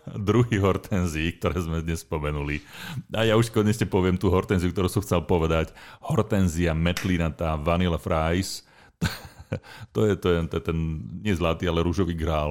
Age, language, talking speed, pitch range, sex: 40-59, Slovak, 145 wpm, 80-100 Hz, male